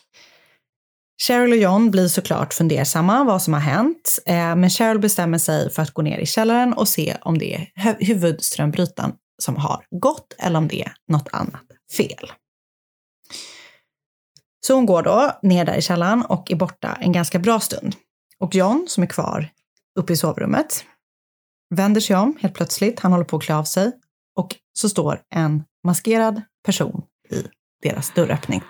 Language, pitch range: Swedish, 165-215 Hz